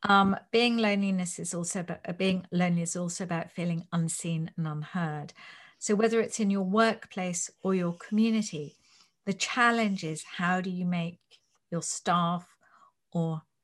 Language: English